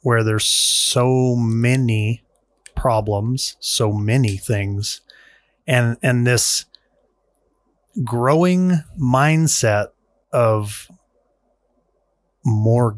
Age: 30-49